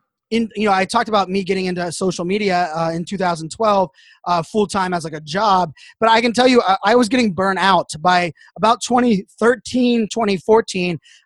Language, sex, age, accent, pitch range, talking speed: English, male, 20-39, American, 175-220 Hz, 185 wpm